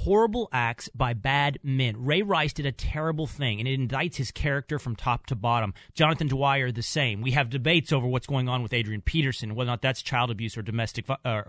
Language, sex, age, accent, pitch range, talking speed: English, male, 30-49, American, 120-165 Hz, 225 wpm